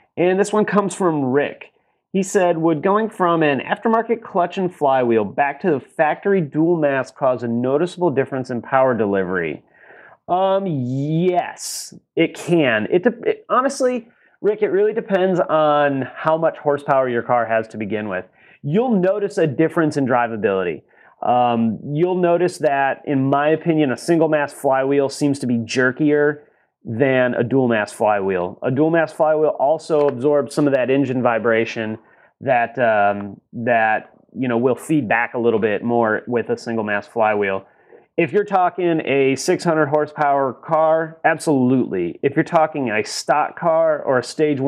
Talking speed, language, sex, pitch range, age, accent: 165 wpm, English, male, 125-175 Hz, 30-49, American